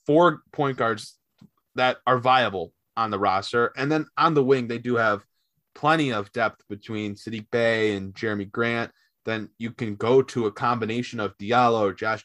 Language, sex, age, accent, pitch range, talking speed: English, male, 20-39, American, 115-135 Hz, 175 wpm